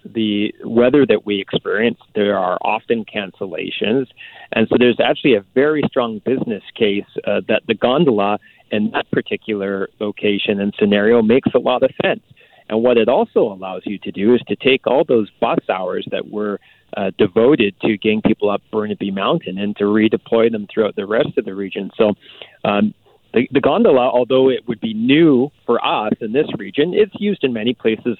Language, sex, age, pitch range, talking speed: English, male, 40-59, 100-130 Hz, 185 wpm